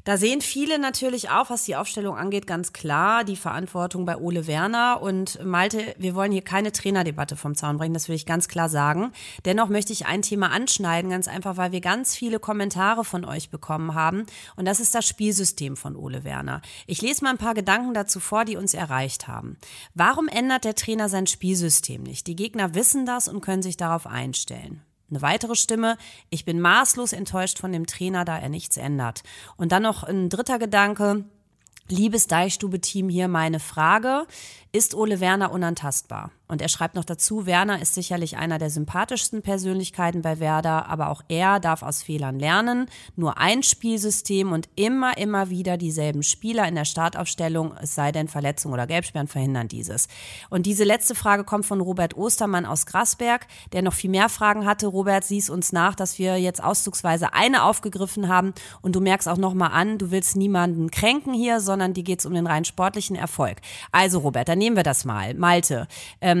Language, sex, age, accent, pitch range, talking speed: German, female, 30-49, German, 165-210 Hz, 190 wpm